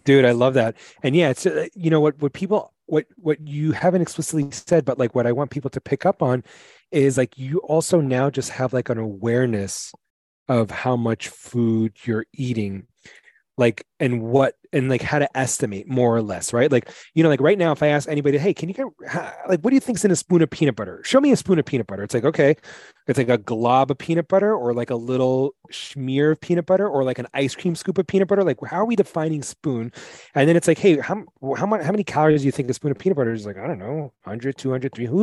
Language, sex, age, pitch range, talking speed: English, male, 30-49, 120-155 Hz, 255 wpm